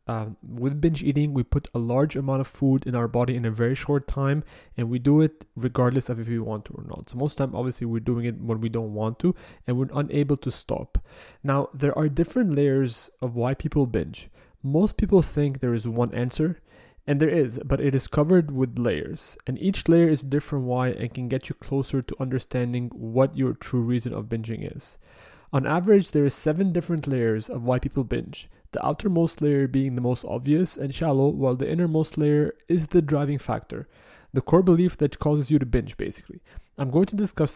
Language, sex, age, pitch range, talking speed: English, male, 30-49, 120-145 Hz, 220 wpm